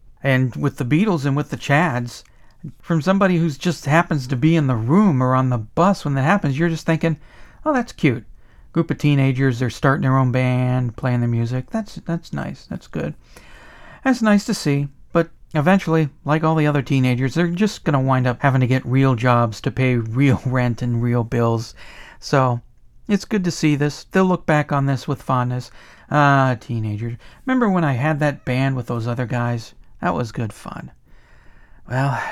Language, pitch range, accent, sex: English, 125-165 Hz, American, male